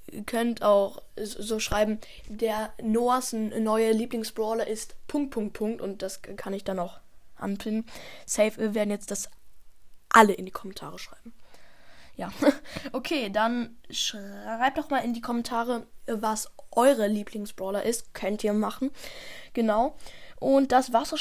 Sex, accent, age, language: female, German, 10-29, German